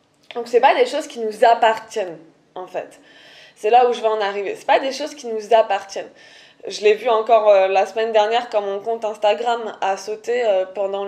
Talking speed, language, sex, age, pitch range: 215 wpm, French, female, 20-39, 205-245 Hz